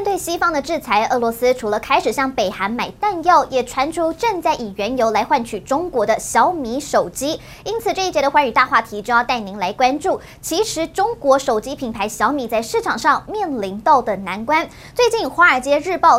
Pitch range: 240-335 Hz